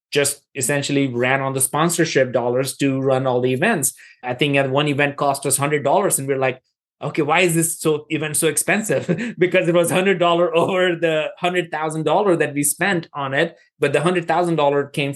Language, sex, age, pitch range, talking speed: English, male, 20-39, 135-165 Hz, 215 wpm